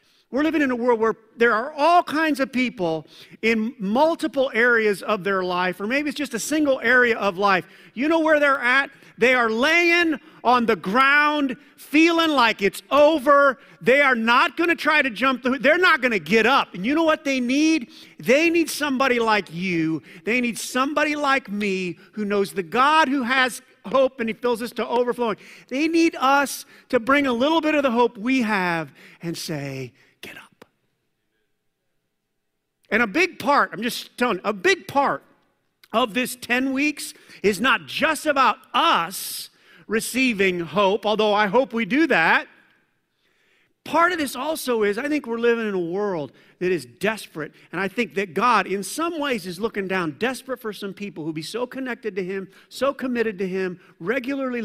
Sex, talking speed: male, 190 wpm